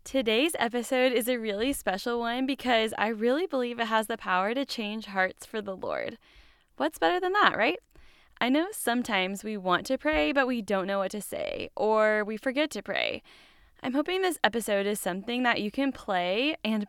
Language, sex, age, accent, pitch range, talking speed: English, female, 10-29, American, 200-255 Hz, 200 wpm